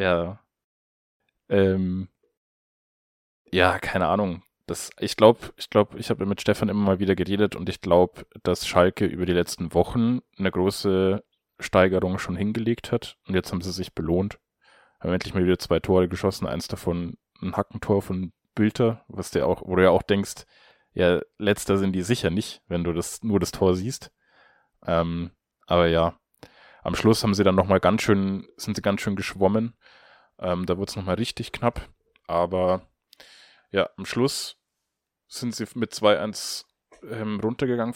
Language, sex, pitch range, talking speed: German, male, 90-105 Hz, 170 wpm